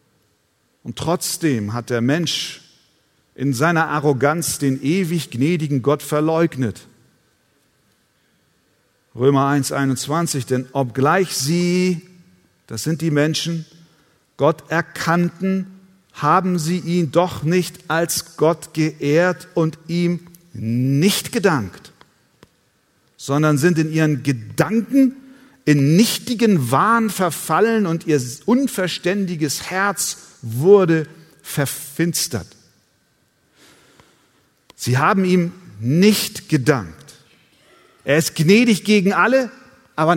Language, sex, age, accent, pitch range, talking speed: German, male, 50-69, German, 130-175 Hz, 95 wpm